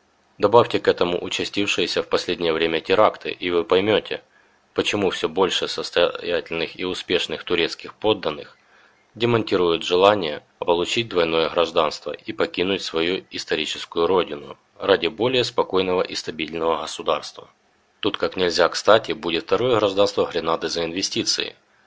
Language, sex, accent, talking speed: Russian, male, native, 125 wpm